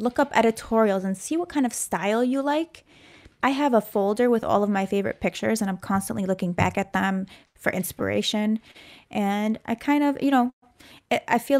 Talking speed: 195 wpm